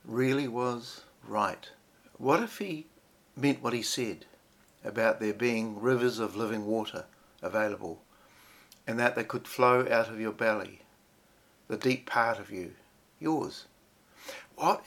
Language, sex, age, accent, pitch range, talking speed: English, male, 60-79, Australian, 110-130 Hz, 135 wpm